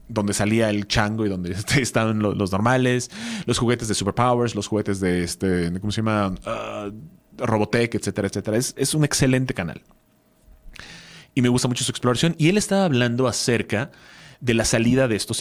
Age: 30-49